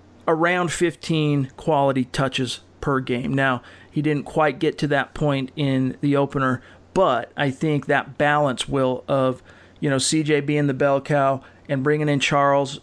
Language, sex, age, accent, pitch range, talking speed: English, male, 40-59, American, 130-150 Hz, 165 wpm